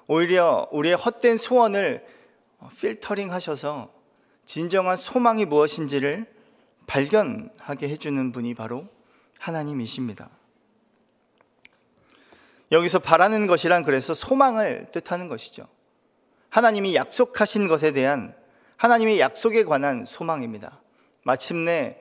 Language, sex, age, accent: Korean, male, 40-59, native